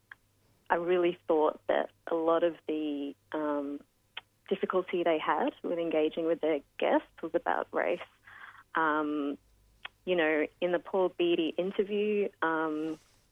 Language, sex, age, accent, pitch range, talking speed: English, female, 30-49, Australian, 150-175 Hz, 130 wpm